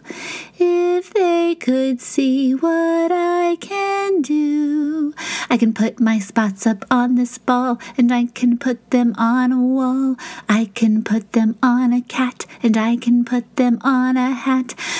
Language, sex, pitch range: English, female, 245-340 Hz